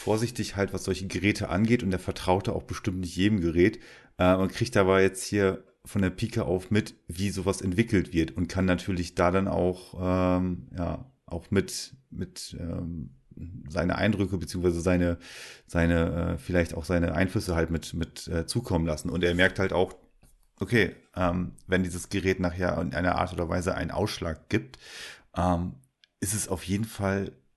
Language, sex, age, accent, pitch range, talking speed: German, male, 30-49, German, 85-100 Hz, 180 wpm